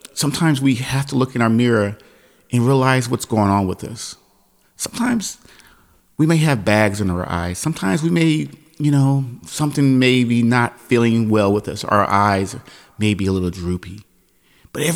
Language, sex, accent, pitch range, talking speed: English, male, American, 100-140 Hz, 175 wpm